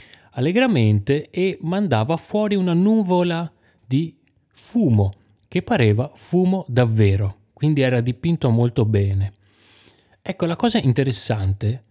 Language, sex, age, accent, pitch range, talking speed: Italian, male, 30-49, native, 105-145 Hz, 105 wpm